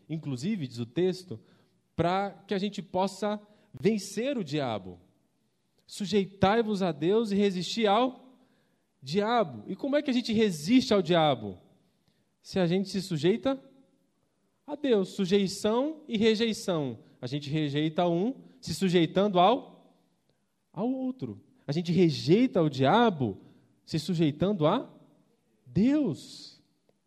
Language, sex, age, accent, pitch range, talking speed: Portuguese, male, 20-39, Brazilian, 145-210 Hz, 125 wpm